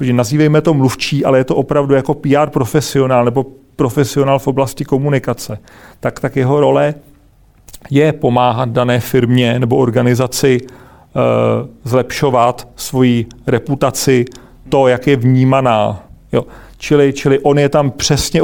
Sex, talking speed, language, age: male, 130 wpm, Czech, 40-59